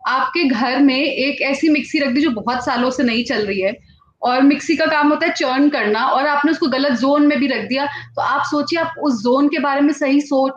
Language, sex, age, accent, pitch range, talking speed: Hindi, female, 30-49, native, 260-315 Hz, 250 wpm